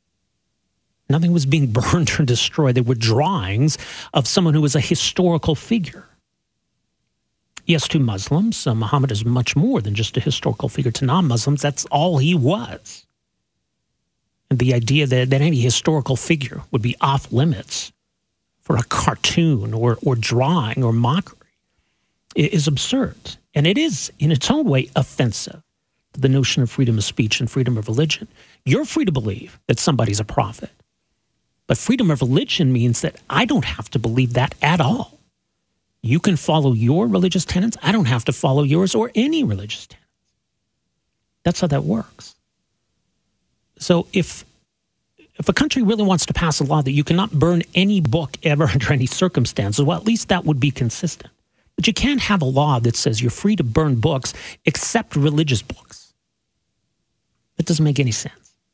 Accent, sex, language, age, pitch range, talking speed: American, male, English, 40-59, 125-170 Hz, 170 wpm